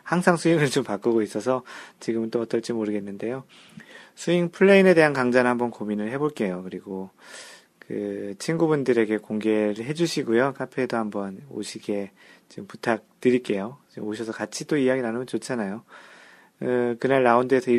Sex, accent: male, native